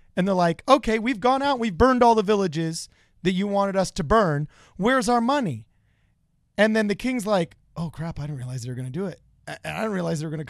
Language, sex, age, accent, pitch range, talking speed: English, male, 30-49, American, 155-225 Hz, 255 wpm